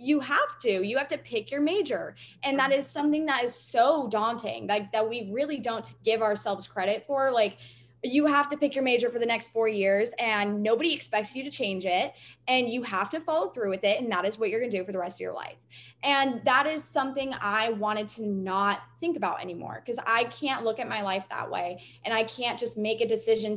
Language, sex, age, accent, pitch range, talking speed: English, female, 20-39, American, 195-250 Hz, 235 wpm